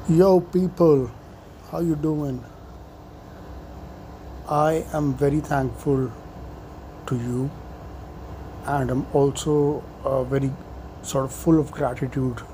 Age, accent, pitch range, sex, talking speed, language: 50-69, Indian, 95-145 Hz, male, 100 wpm, English